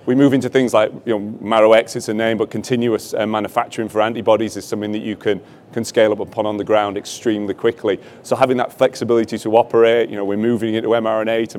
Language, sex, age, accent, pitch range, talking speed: English, male, 30-49, British, 105-125 Hz, 230 wpm